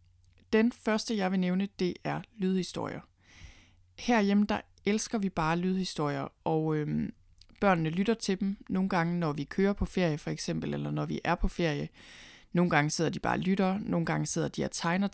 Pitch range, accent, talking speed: 155-190 Hz, native, 190 wpm